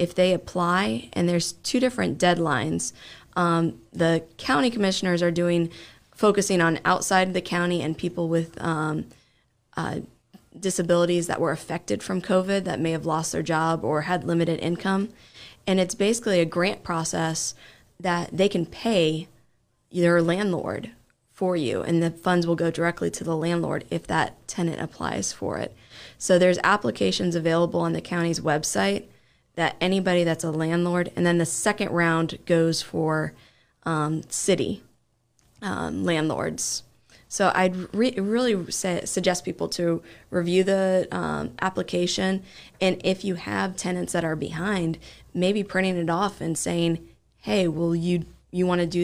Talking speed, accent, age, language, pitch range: 155 wpm, American, 20-39, English, 160-180 Hz